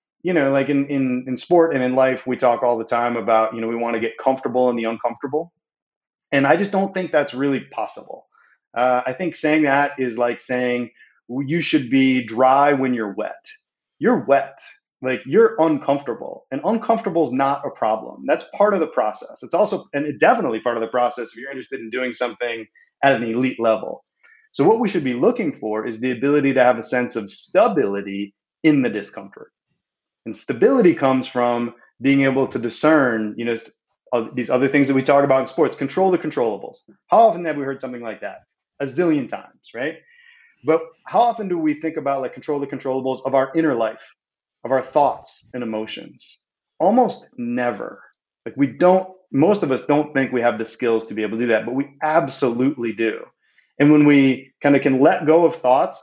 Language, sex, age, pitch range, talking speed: English, male, 30-49, 120-150 Hz, 200 wpm